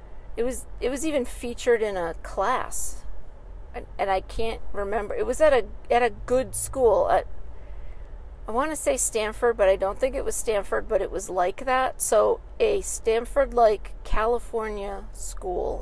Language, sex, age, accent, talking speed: English, female, 40-59, American, 170 wpm